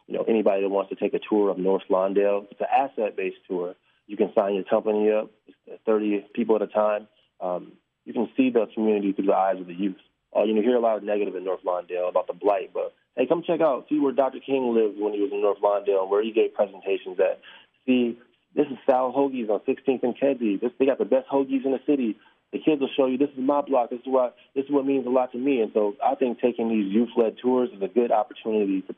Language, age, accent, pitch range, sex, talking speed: English, 20-39, American, 105-130 Hz, male, 260 wpm